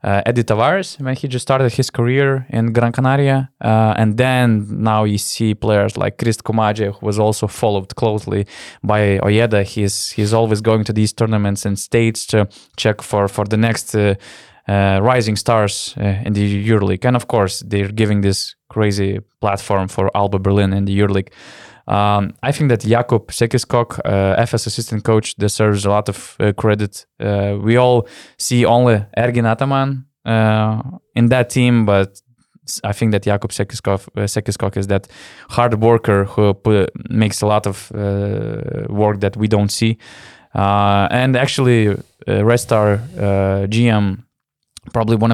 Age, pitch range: 20-39, 100-120 Hz